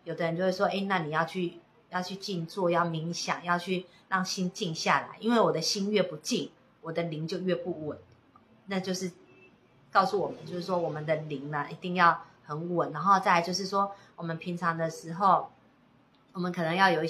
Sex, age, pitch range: female, 30-49, 165-200 Hz